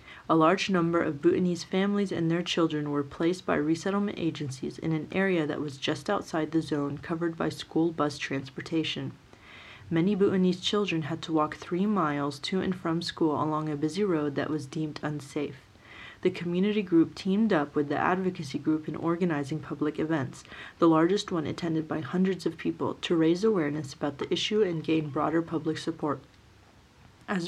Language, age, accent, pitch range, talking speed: English, 30-49, American, 150-180 Hz, 175 wpm